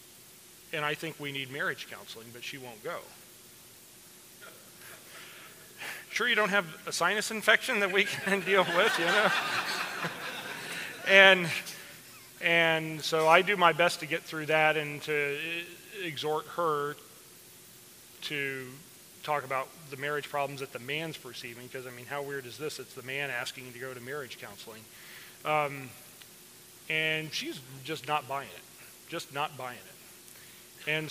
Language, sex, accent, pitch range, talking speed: English, male, American, 135-165 Hz, 150 wpm